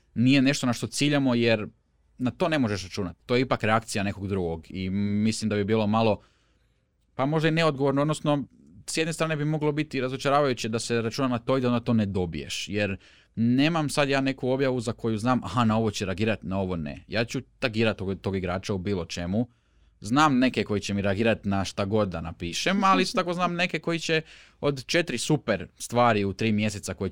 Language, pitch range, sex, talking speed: Croatian, 95-120 Hz, male, 215 wpm